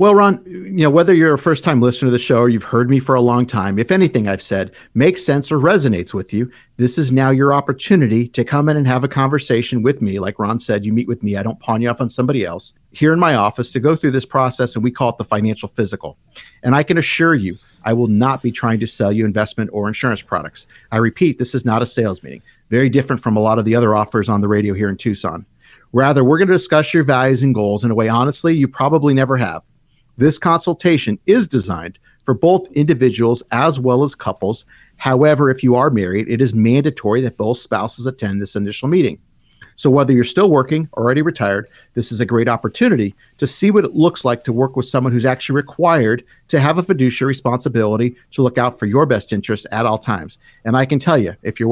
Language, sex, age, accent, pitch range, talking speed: English, male, 50-69, American, 110-140 Hz, 240 wpm